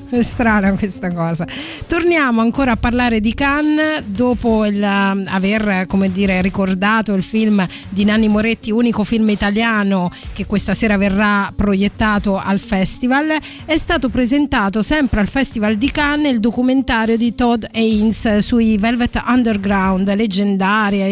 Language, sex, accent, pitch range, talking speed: Italian, female, native, 200-250 Hz, 135 wpm